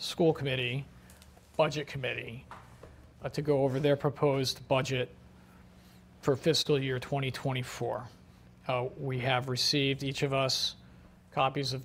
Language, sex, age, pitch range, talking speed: English, male, 40-59, 125-150 Hz, 120 wpm